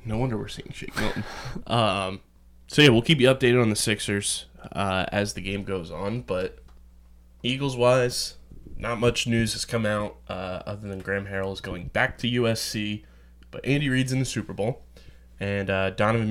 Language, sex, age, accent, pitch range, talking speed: English, male, 20-39, American, 95-115 Hz, 185 wpm